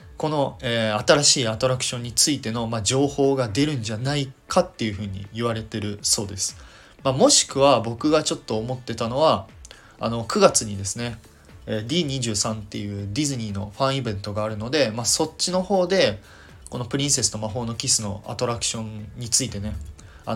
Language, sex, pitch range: Japanese, male, 105-130 Hz